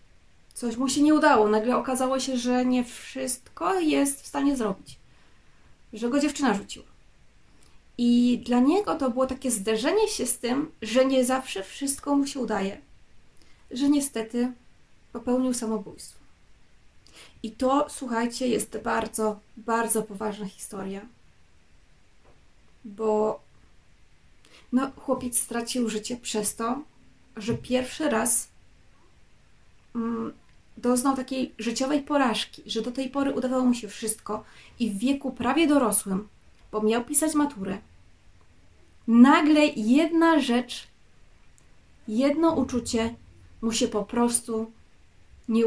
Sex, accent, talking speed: female, native, 115 wpm